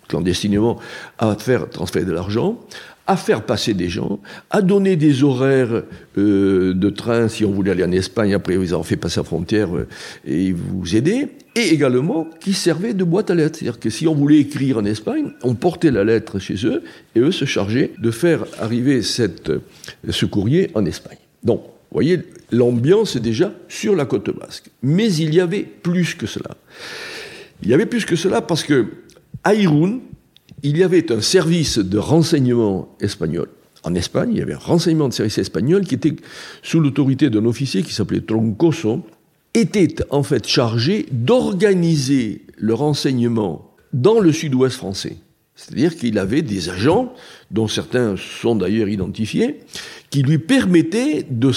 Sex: male